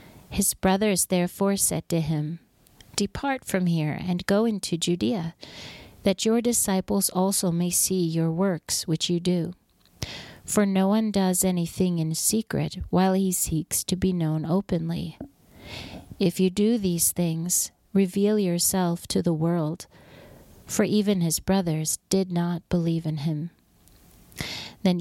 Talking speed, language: 140 wpm, English